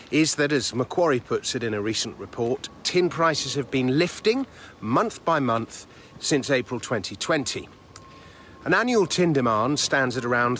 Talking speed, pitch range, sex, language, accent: 160 wpm, 115-150 Hz, male, English, British